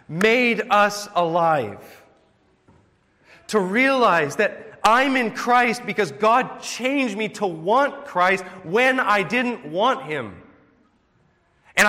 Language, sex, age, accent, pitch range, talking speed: English, male, 30-49, American, 160-225 Hz, 110 wpm